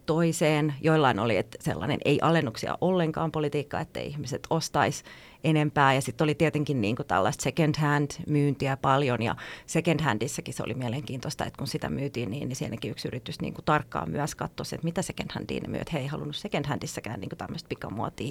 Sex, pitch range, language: female, 135-165 Hz, Finnish